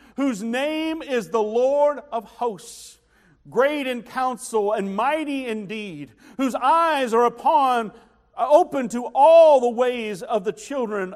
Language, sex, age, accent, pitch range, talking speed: English, male, 50-69, American, 235-320 Hz, 140 wpm